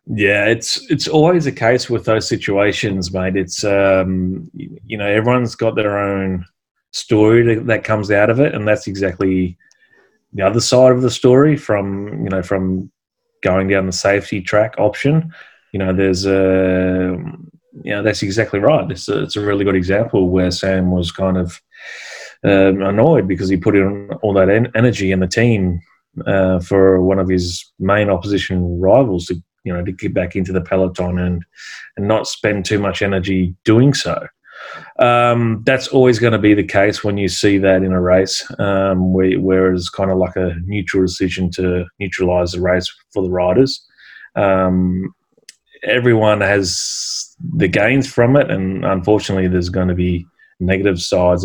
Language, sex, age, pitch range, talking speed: English, male, 30-49, 95-105 Hz, 175 wpm